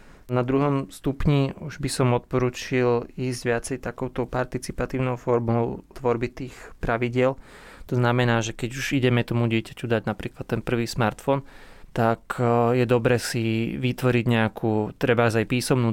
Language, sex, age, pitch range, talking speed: Slovak, male, 20-39, 110-125 Hz, 140 wpm